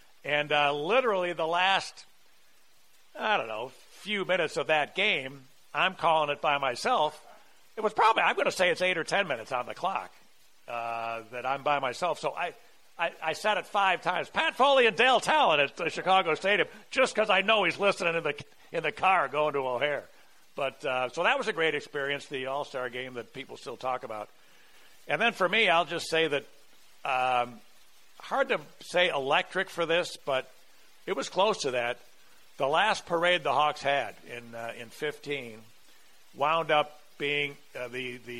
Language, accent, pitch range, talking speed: English, American, 120-170 Hz, 190 wpm